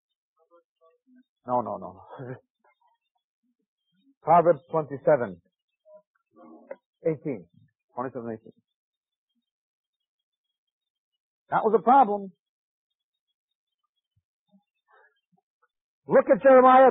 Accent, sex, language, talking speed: American, male, English, 55 wpm